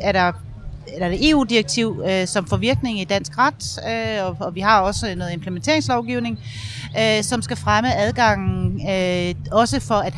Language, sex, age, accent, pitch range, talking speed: Danish, female, 30-49, native, 145-215 Hz, 165 wpm